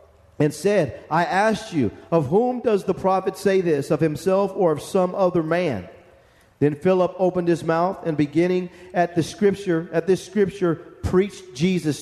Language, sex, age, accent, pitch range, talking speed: English, male, 40-59, American, 135-180 Hz, 170 wpm